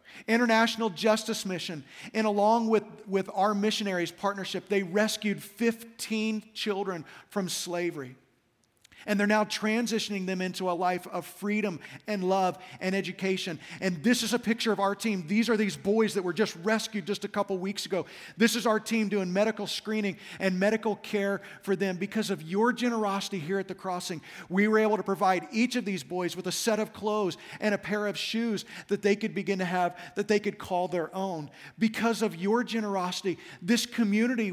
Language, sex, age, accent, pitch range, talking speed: English, male, 40-59, American, 185-215 Hz, 190 wpm